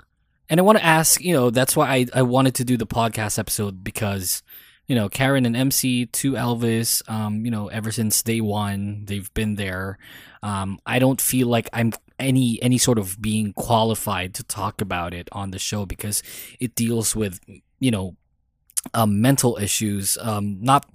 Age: 20-39